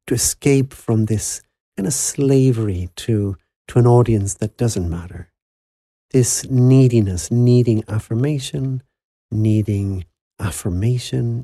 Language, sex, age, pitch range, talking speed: English, male, 60-79, 95-125 Hz, 105 wpm